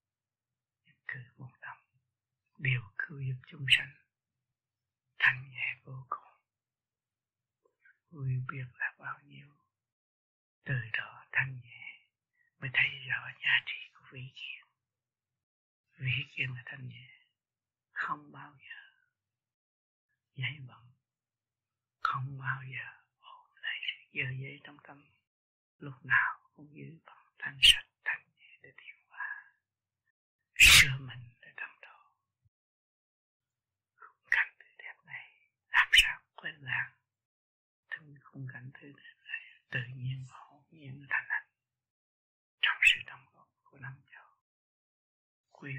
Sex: male